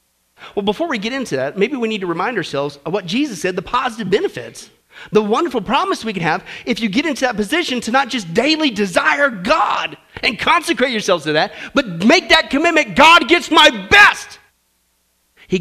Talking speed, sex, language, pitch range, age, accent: 195 wpm, male, English, 195-315 Hz, 40-59, American